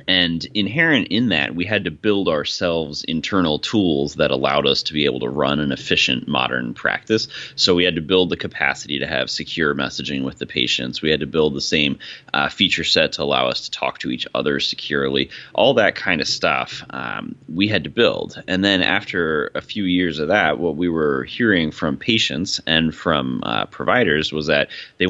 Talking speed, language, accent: 205 wpm, English, American